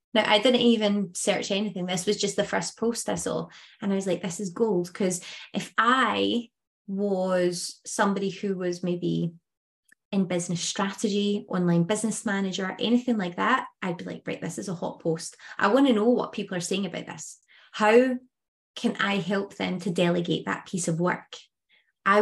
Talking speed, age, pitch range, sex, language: 185 wpm, 20-39, 185-230 Hz, female, English